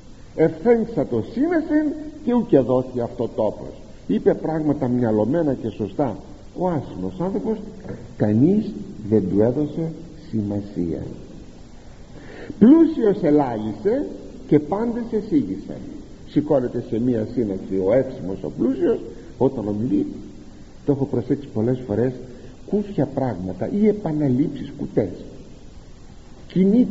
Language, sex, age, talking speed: Greek, male, 50-69, 105 wpm